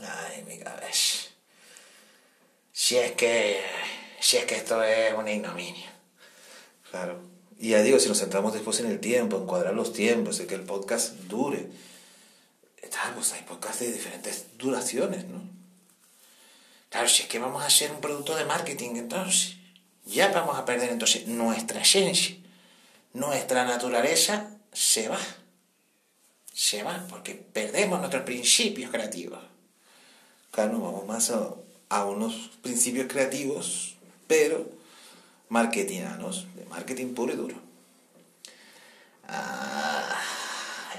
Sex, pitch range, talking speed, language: male, 115-190 Hz, 130 wpm, Spanish